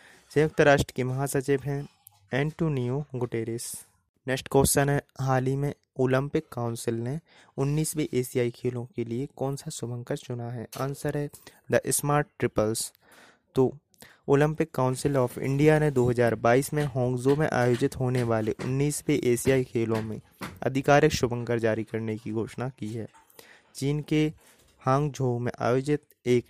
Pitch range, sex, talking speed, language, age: 120-140 Hz, male, 145 wpm, Hindi, 20-39